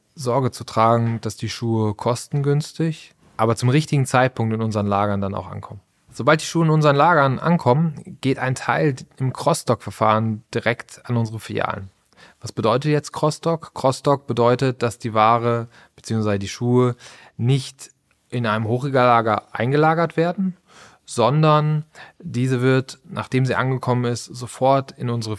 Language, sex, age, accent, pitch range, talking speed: German, male, 20-39, German, 110-140 Hz, 145 wpm